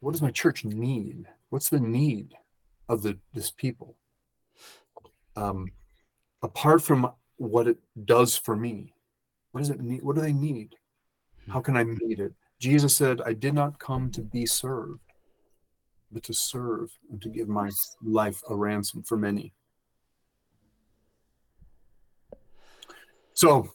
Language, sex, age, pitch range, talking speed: English, male, 40-59, 105-135 Hz, 135 wpm